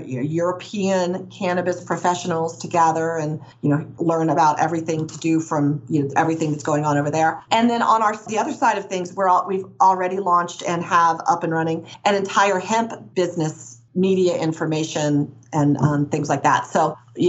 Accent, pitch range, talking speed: American, 160-190 Hz, 185 wpm